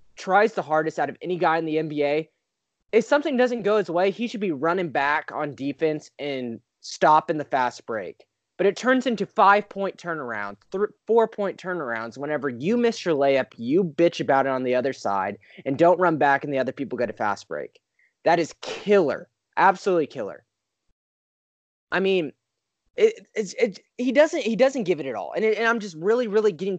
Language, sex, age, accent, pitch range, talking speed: English, male, 20-39, American, 160-235 Hz, 195 wpm